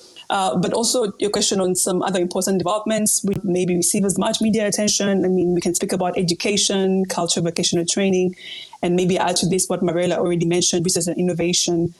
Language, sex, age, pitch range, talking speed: English, female, 20-39, 175-190 Hz, 195 wpm